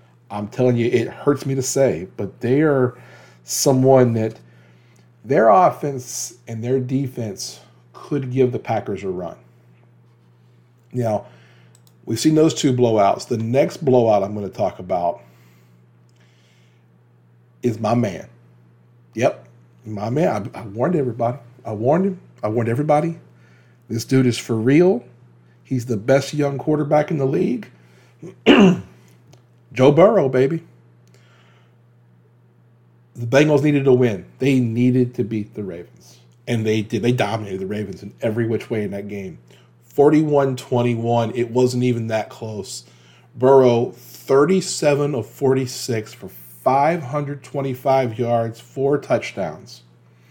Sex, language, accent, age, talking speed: male, English, American, 40-59, 130 wpm